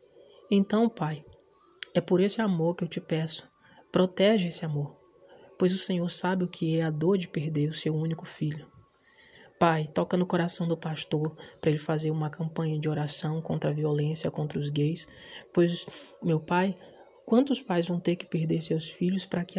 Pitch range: 160-215 Hz